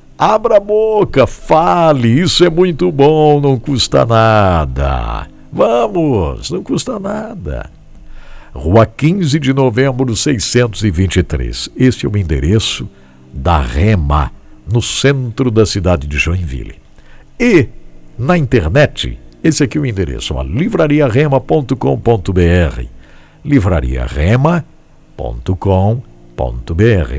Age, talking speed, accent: 60-79, 95 wpm, Brazilian